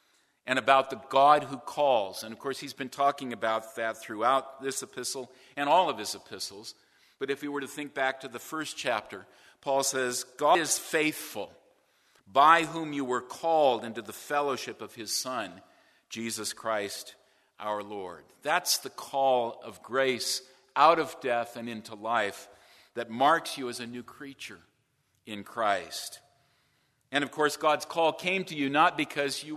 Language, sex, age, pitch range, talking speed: English, male, 50-69, 120-145 Hz, 170 wpm